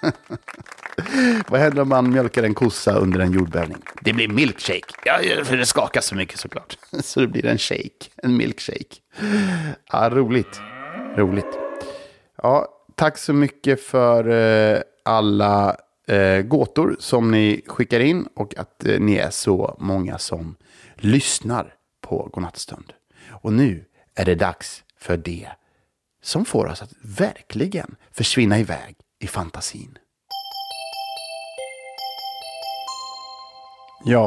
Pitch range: 105-150 Hz